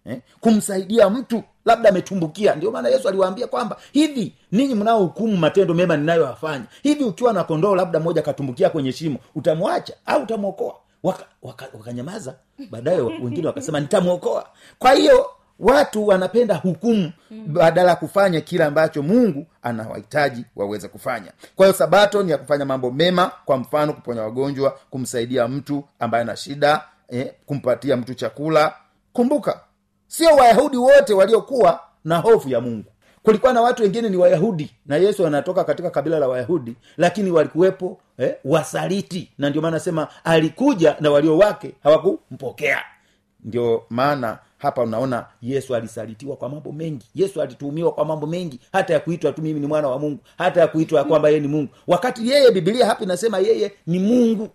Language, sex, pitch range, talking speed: Swahili, male, 145-205 Hz, 160 wpm